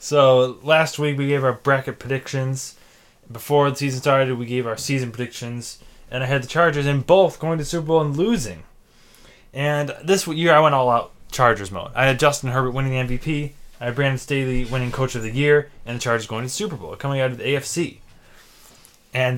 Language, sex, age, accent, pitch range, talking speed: English, male, 20-39, American, 130-190 Hz, 210 wpm